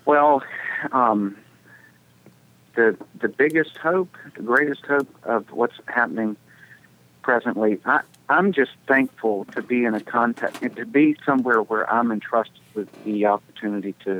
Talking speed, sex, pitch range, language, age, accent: 140 wpm, male, 95-115 Hz, English, 50-69, American